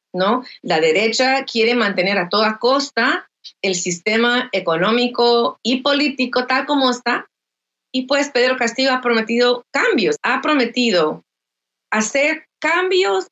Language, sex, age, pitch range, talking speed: Spanish, female, 40-59, 200-255 Hz, 120 wpm